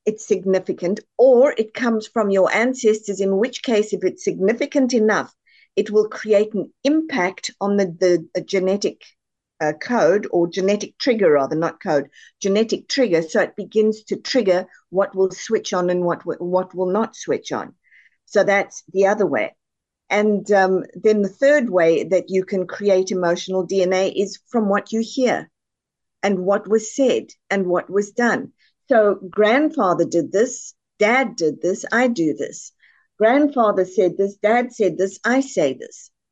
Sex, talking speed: female, 165 wpm